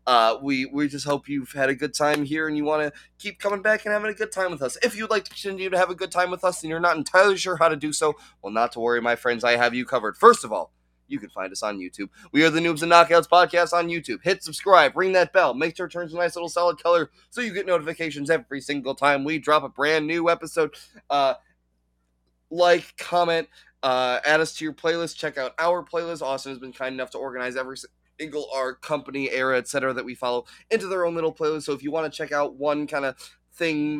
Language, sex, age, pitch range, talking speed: English, male, 20-39, 125-165 Hz, 260 wpm